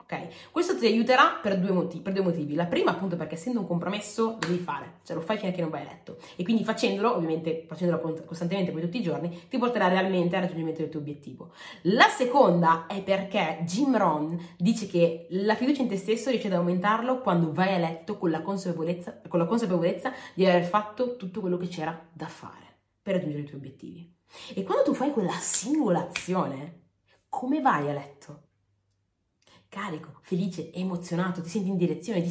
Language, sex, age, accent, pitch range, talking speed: Italian, female, 20-39, native, 170-220 Hz, 190 wpm